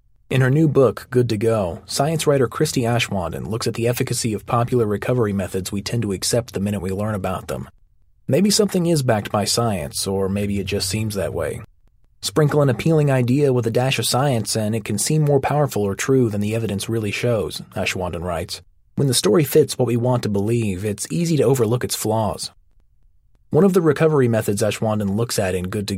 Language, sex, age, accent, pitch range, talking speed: English, male, 30-49, American, 100-130 Hz, 210 wpm